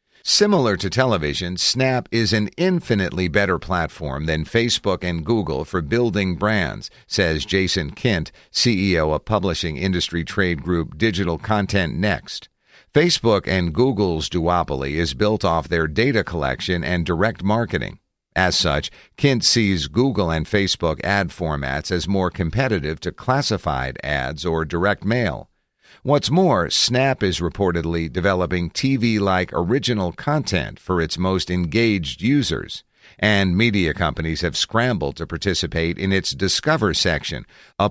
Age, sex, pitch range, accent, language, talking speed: 50-69, male, 85-110 Hz, American, English, 135 wpm